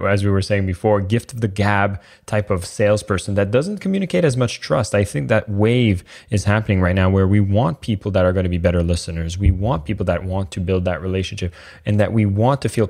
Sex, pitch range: male, 95-115 Hz